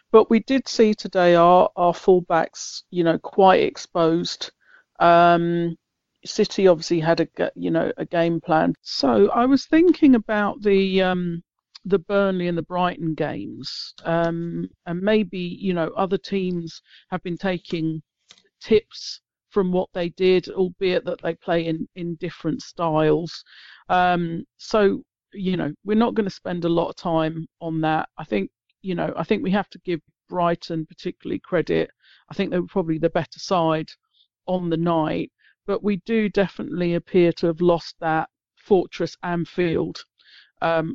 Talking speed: 160 wpm